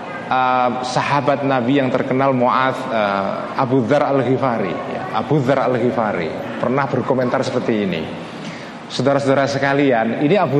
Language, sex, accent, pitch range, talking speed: Indonesian, male, native, 130-180 Hz, 120 wpm